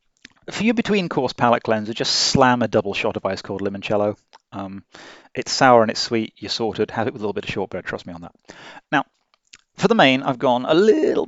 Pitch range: 105-140 Hz